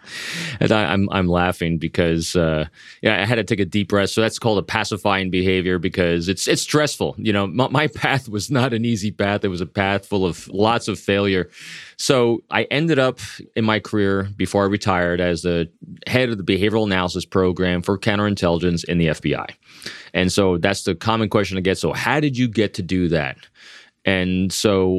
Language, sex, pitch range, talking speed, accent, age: English, male, 90-110 Hz, 205 wpm, American, 30-49